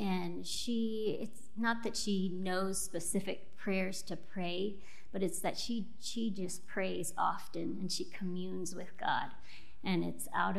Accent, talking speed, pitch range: American, 155 wpm, 180-215 Hz